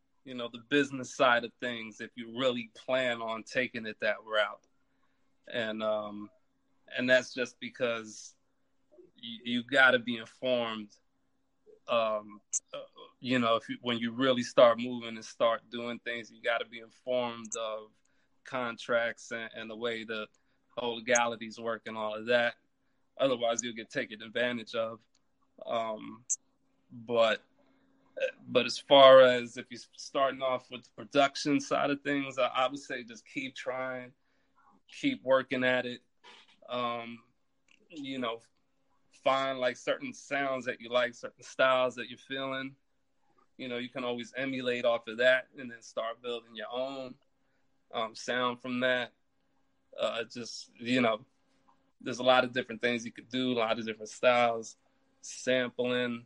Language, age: English, 30-49